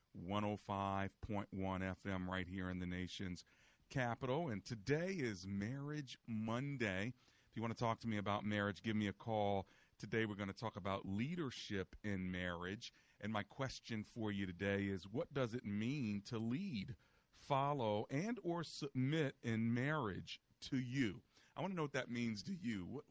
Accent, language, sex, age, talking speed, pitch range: American, English, male, 40-59, 170 wpm, 100-125 Hz